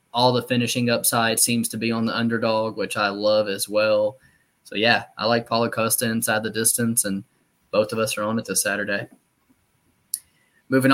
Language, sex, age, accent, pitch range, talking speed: English, male, 20-39, American, 110-125 Hz, 185 wpm